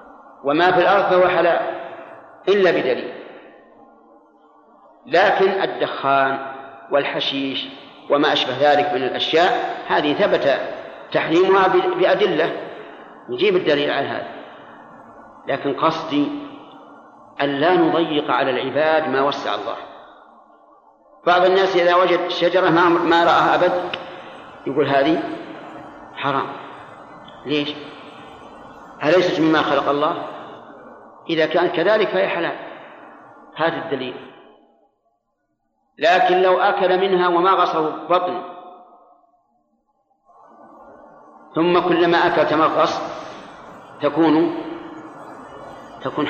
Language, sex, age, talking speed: Arabic, male, 50-69, 85 wpm